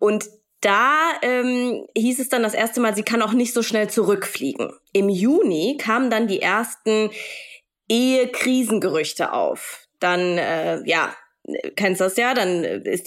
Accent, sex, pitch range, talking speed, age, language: German, female, 185-240 Hz, 145 wpm, 20-39, German